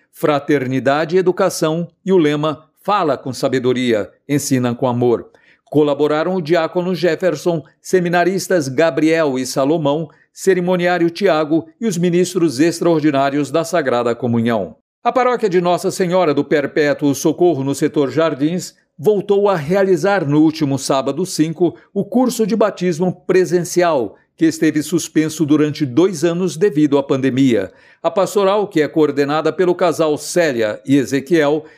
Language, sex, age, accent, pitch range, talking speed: Portuguese, male, 50-69, Brazilian, 150-185 Hz, 135 wpm